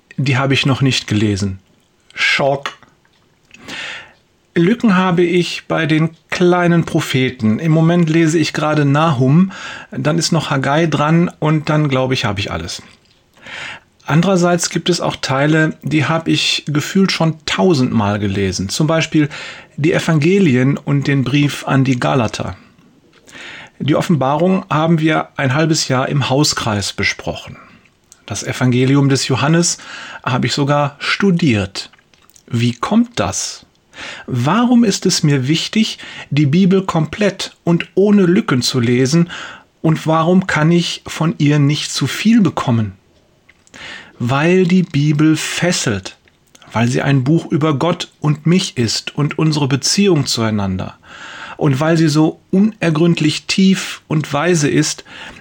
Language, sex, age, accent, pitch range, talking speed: German, male, 40-59, German, 130-175 Hz, 135 wpm